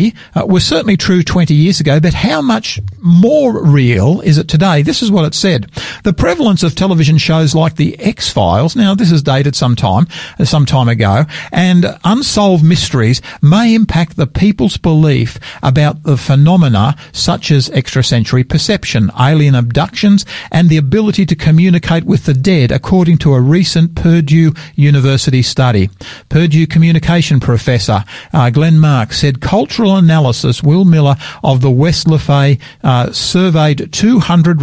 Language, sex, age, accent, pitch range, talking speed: English, male, 50-69, Australian, 135-175 Hz, 150 wpm